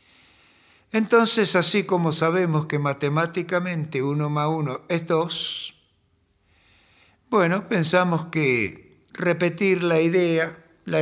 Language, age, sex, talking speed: Spanish, 60-79, male, 100 wpm